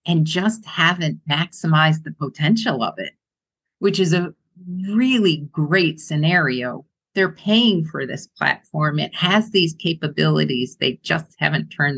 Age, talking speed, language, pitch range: 50-69, 135 wpm, English, 135-175 Hz